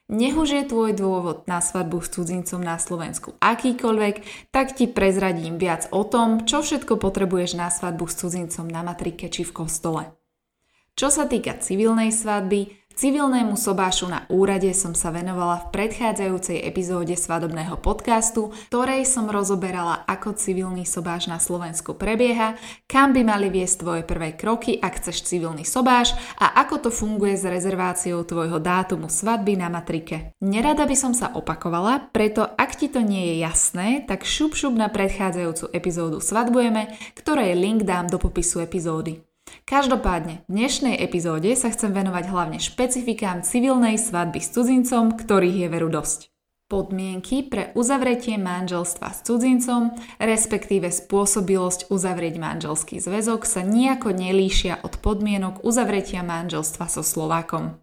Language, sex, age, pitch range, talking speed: Slovak, female, 20-39, 175-230 Hz, 145 wpm